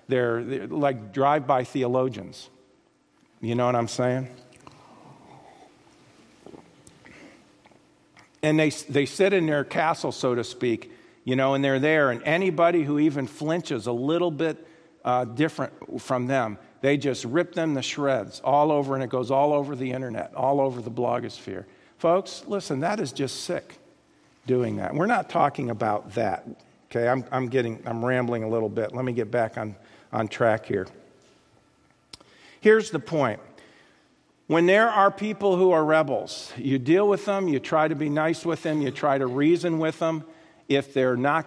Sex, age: male, 50-69